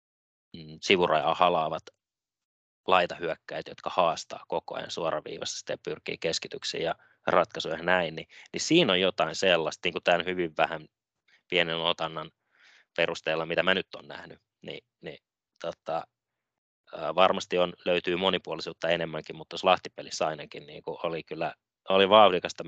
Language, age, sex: Finnish, 20-39, male